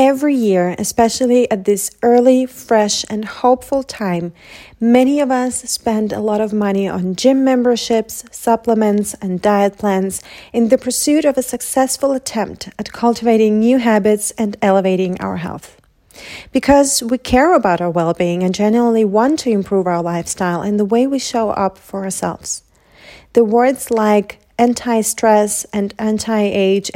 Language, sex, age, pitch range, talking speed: English, female, 30-49, 195-245 Hz, 150 wpm